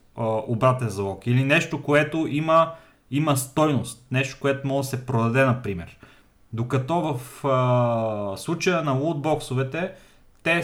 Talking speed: 125 wpm